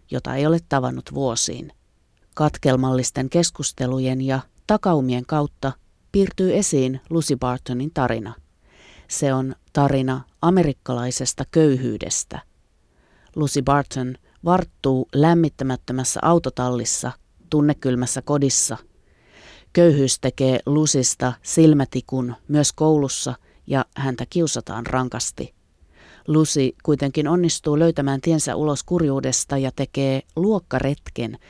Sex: female